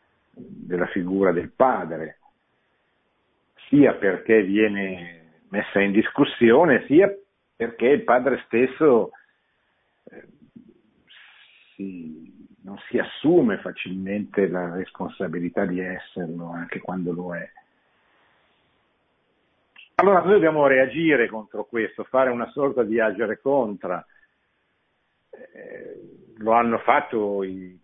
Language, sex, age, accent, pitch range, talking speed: Italian, male, 50-69, native, 95-135 Hz, 95 wpm